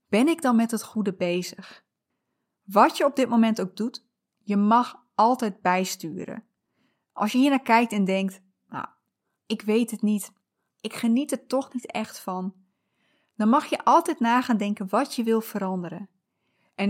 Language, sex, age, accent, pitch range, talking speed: Dutch, female, 20-39, Dutch, 200-255 Hz, 170 wpm